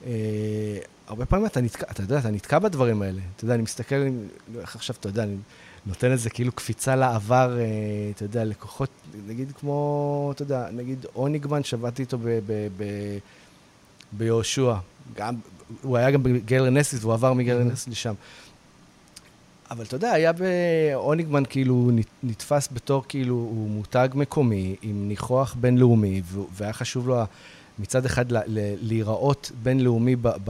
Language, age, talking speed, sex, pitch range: Hebrew, 30-49, 145 wpm, male, 110-135 Hz